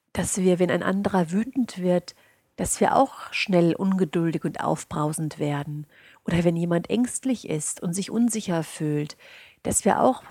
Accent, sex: German, female